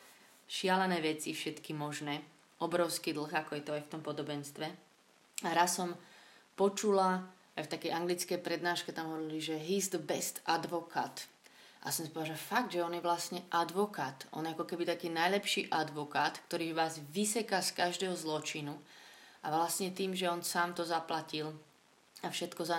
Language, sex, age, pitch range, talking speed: Slovak, female, 30-49, 160-180 Hz, 170 wpm